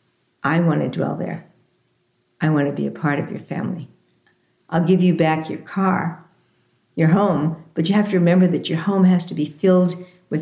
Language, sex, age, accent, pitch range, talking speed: English, female, 60-79, American, 150-180 Hz, 200 wpm